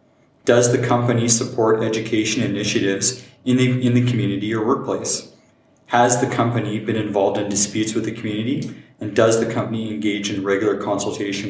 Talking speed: 155 wpm